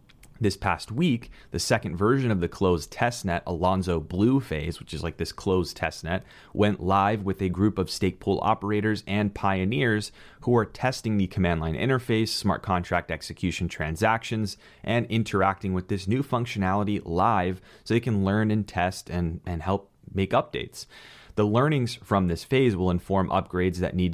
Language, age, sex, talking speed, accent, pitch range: English, 30-49, male, 170 wpm, American, 90-115 Hz